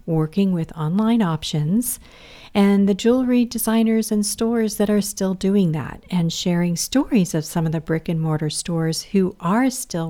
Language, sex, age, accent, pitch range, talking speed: English, female, 50-69, American, 165-210 Hz, 170 wpm